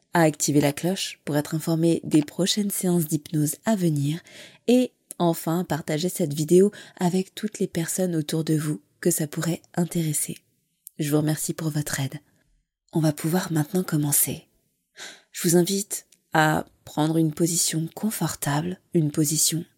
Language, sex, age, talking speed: French, female, 20-39, 150 wpm